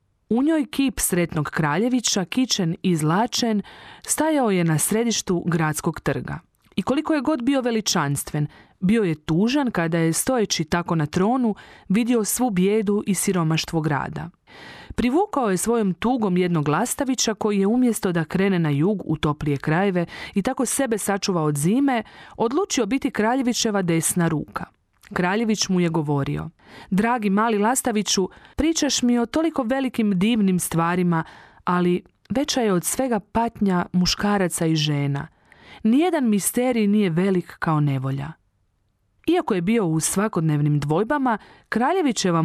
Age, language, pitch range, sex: 40-59, Croatian, 165-230 Hz, female